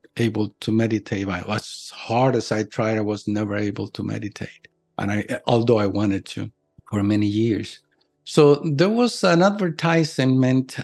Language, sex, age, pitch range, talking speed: English, male, 50-69, 110-130 Hz, 155 wpm